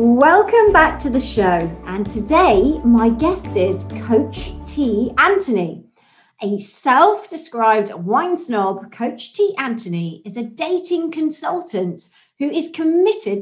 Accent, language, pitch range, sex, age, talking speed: British, English, 210-310 Hz, female, 40-59, 120 wpm